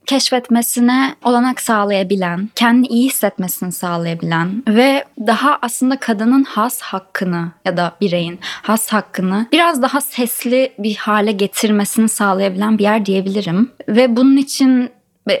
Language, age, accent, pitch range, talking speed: Turkish, 20-39, native, 200-245 Hz, 125 wpm